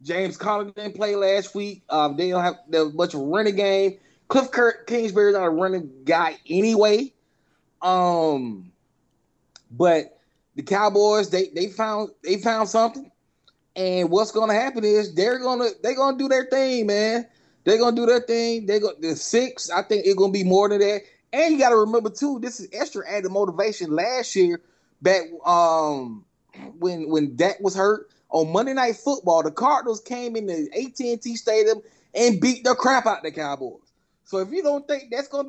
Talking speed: 195 wpm